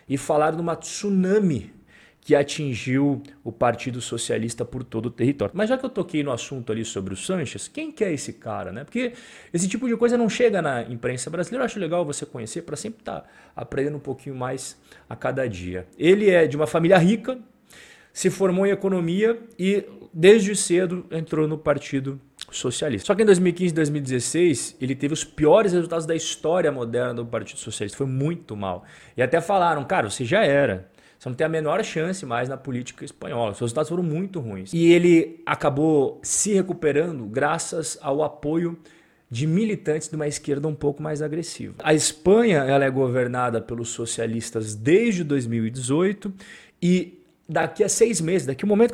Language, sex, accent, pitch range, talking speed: Portuguese, male, Brazilian, 130-185 Hz, 185 wpm